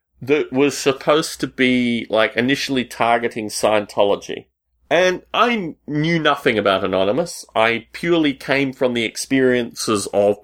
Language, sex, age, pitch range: English, male, 30-49, 110-155 Hz